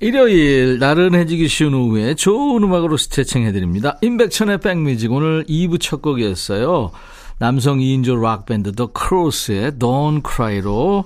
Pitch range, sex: 115-175 Hz, male